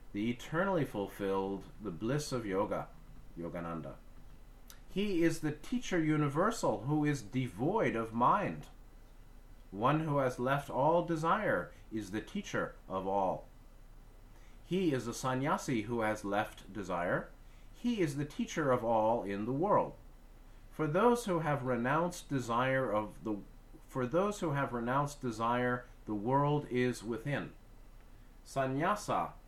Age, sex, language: 30-49, male, English